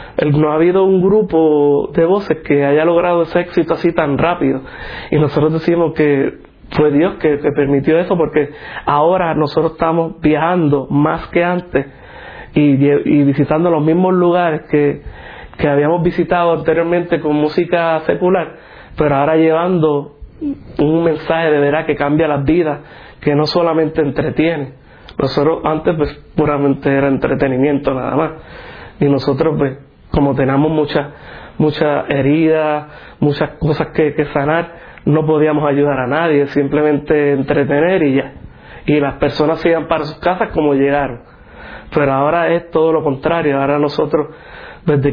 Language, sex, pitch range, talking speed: Spanish, male, 145-165 Hz, 150 wpm